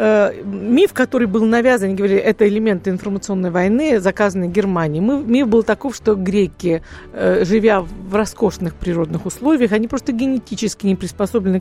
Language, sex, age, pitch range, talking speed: Russian, female, 50-69, 185-225 Hz, 145 wpm